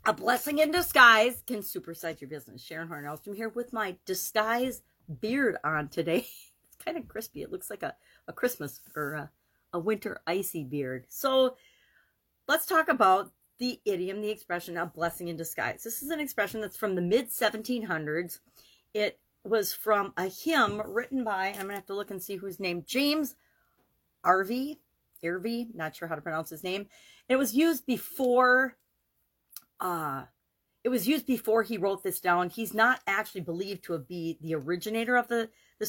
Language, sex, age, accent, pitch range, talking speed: English, female, 40-59, American, 170-235 Hz, 175 wpm